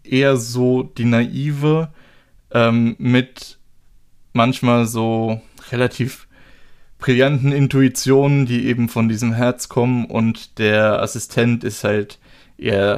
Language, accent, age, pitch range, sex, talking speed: German, German, 20-39, 110-125 Hz, male, 105 wpm